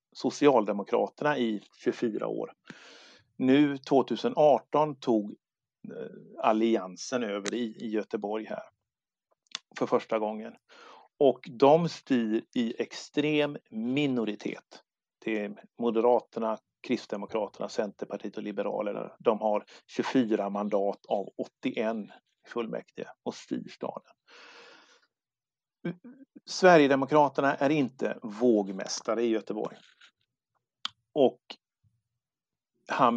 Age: 50-69